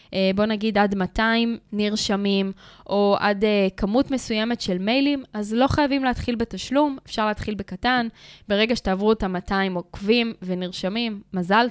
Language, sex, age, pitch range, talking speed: Hebrew, female, 10-29, 195-250 Hz, 145 wpm